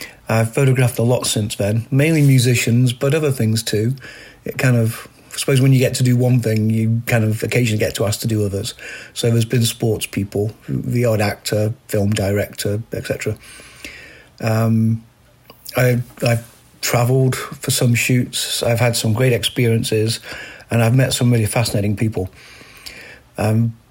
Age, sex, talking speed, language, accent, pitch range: 40-59, male, 160 wpm, English, British, 110-130 Hz